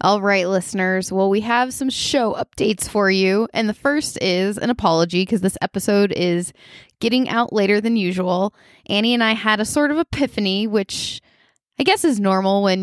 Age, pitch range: 20-39, 175-215 Hz